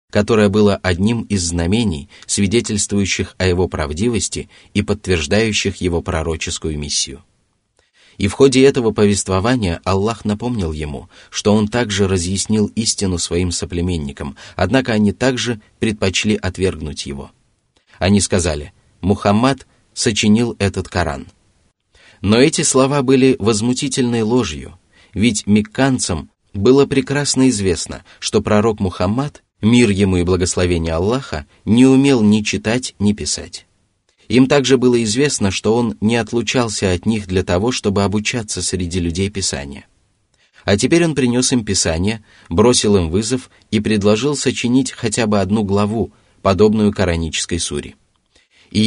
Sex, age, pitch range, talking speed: male, 30-49, 90-115 Hz, 125 wpm